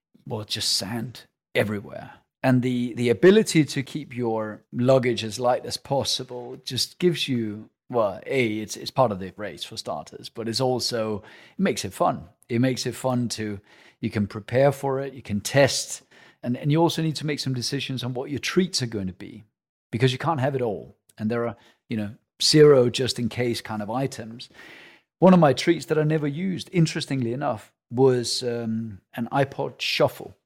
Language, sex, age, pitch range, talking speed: English, male, 40-59, 115-140 Hz, 195 wpm